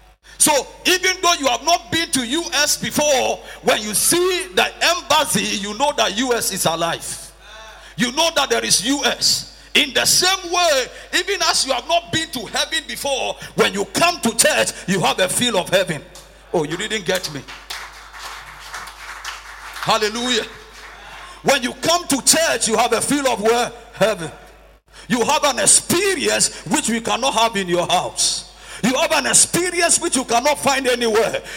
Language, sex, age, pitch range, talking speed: English, male, 50-69, 215-315 Hz, 170 wpm